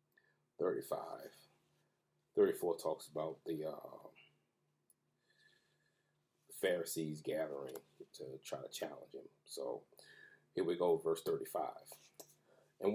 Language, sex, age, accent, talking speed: English, male, 30-49, American, 95 wpm